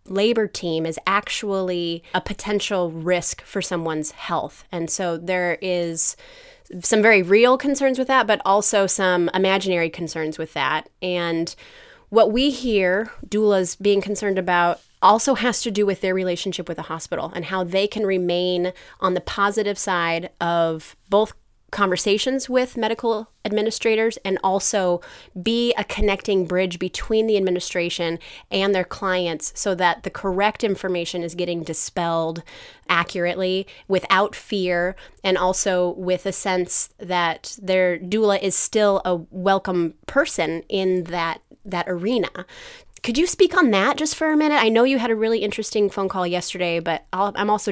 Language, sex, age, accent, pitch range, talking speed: English, female, 20-39, American, 175-215 Hz, 155 wpm